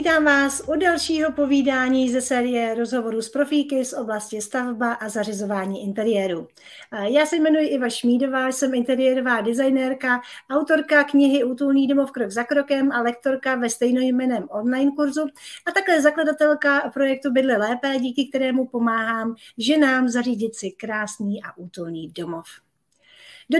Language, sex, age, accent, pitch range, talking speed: Czech, female, 40-59, native, 230-285 Hz, 135 wpm